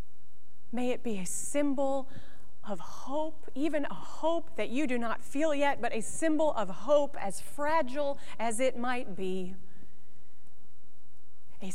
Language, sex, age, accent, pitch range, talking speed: English, female, 30-49, American, 215-270 Hz, 145 wpm